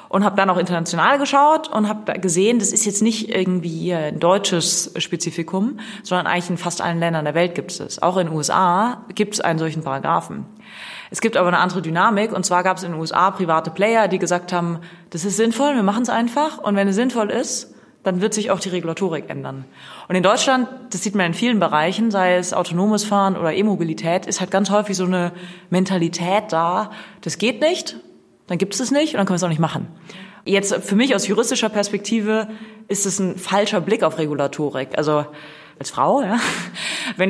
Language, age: German, 30-49